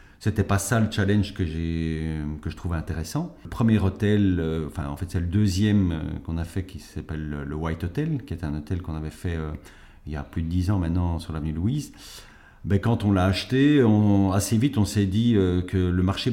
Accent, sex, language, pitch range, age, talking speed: French, male, French, 80-100 Hz, 40-59, 240 wpm